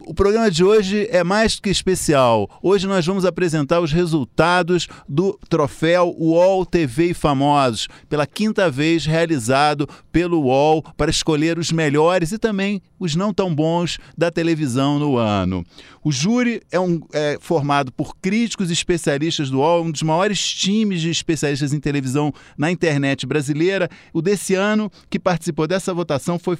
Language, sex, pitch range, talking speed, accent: Portuguese, male, 140-180 Hz, 160 wpm, Brazilian